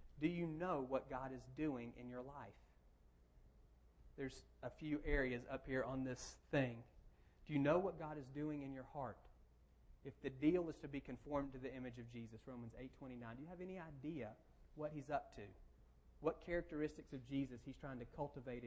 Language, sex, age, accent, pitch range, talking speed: English, male, 30-49, American, 115-150 Hz, 200 wpm